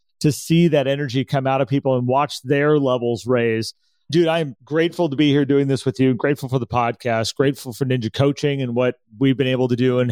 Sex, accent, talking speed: male, American, 235 wpm